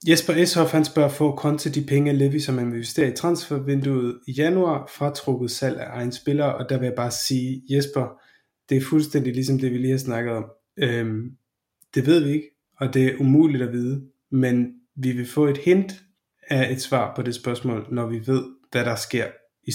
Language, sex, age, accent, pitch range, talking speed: Danish, male, 20-39, native, 120-145 Hz, 215 wpm